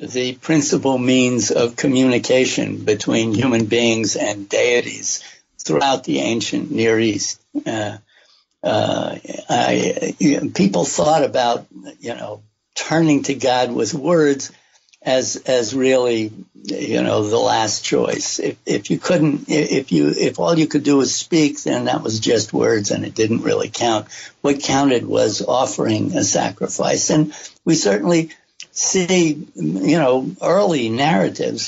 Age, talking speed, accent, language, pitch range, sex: 60-79, 140 wpm, American, English, 115-150 Hz, male